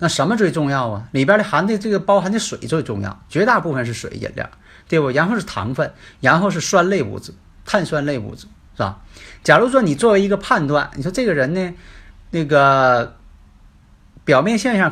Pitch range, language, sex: 115-195 Hz, Chinese, male